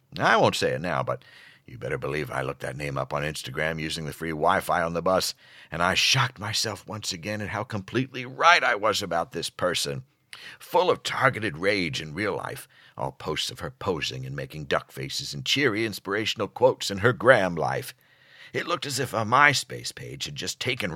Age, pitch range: 60-79, 80-125 Hz